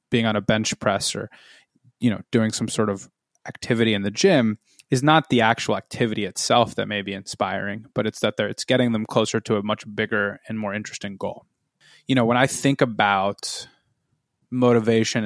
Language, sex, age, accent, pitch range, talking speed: English, male, 20-39, American, 110-130 Hz, 190 wpm